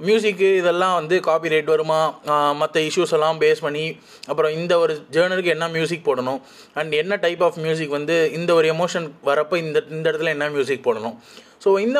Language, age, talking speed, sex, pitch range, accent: Tamil, 20-39, 170 wpm, male, 165-235 Hz, native